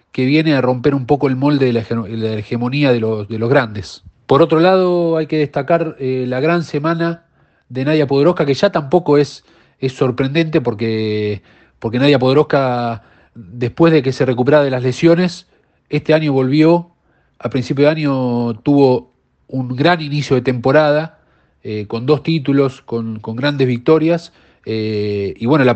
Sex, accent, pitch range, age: male, Argentinian, 120-155 Hz, 40-59